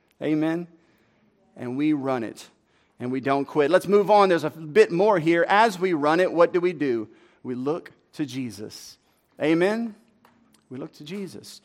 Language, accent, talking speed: English, American, 175 wpm